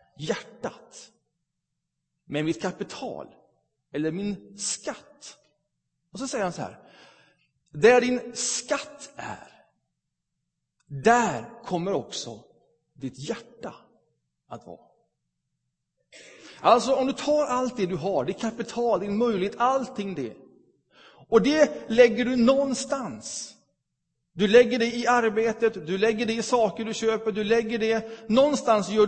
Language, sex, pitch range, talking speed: Swedish, male, 190-245 Hz, 125 wpm